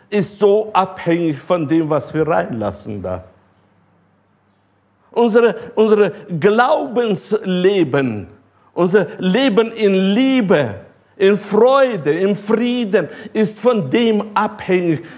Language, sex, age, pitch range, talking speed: German, male, 60-79, 100-155 Hz, 95 wpm